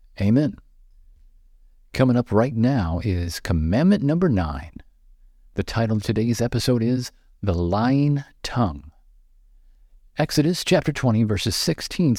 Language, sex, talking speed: English, male, 115 wpm